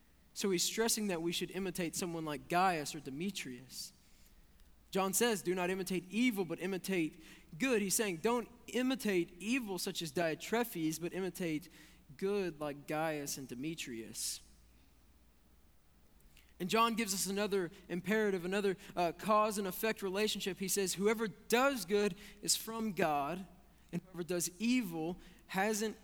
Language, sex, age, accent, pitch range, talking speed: English, male, 20-39, American, 155-205 Hz, 140 wpm